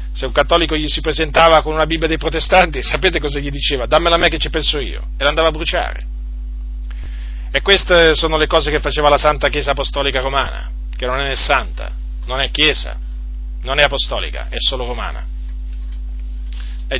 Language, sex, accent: Italian, male, native